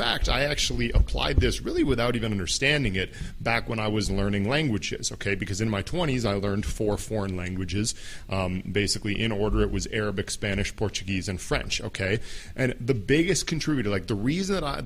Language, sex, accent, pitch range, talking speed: English, male, American, 100-120 Hz, 195 wpm